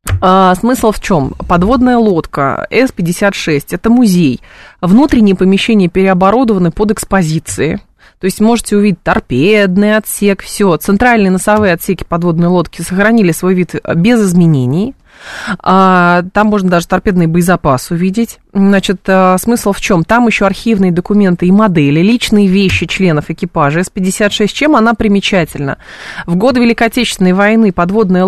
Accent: native